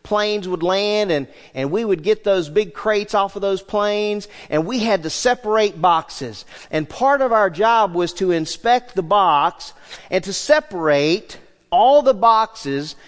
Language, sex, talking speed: English, male, 170 wpm